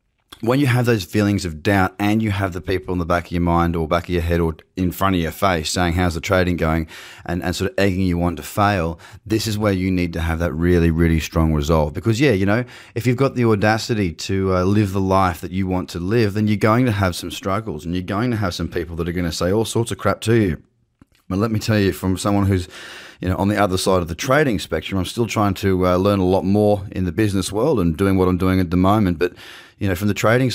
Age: 20-39